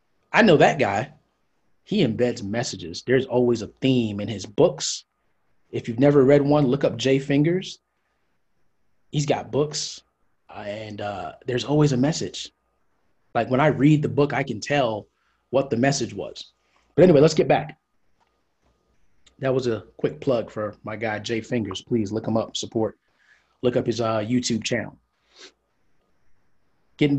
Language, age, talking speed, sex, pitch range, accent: English, 20-39, 160 wpm, male, 110-140 Hz, American